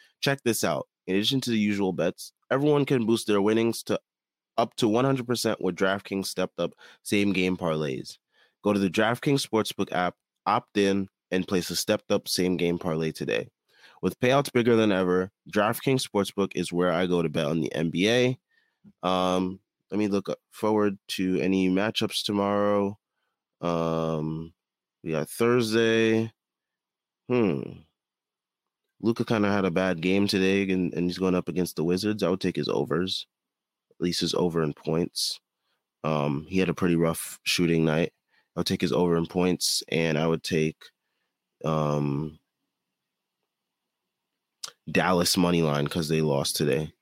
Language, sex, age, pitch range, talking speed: English, male, 20-39, 85-110 Hz, 155 wpm